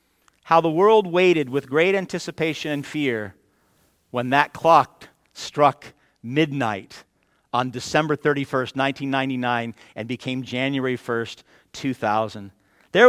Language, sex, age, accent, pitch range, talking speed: English, male, 50-69, American, 140-210 Hz, 110 wpm